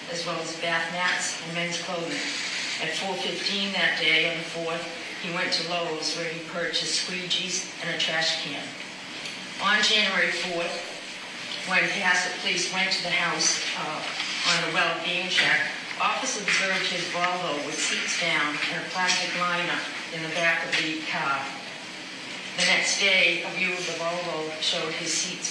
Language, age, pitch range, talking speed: English, 40-59, 160-180 Hz, 165 wpm